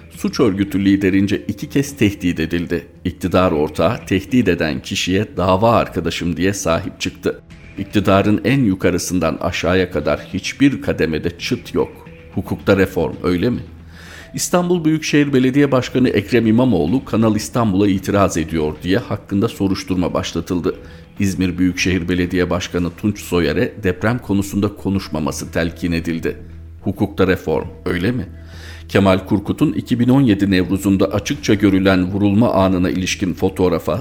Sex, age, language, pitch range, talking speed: male, 50-69, Turkish, 85-105 Hz, 120 wpm